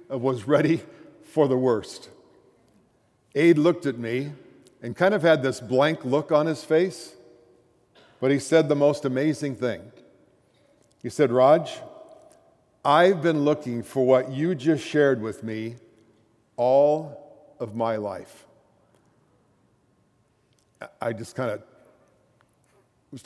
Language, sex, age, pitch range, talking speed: English, male, 50-69, 120-150 Hz, 125 wpm